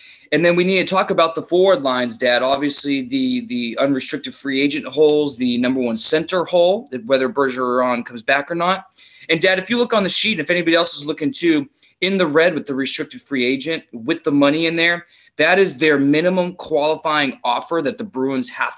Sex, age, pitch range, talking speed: male, 20-39, 135-180 Hz, 210 wpm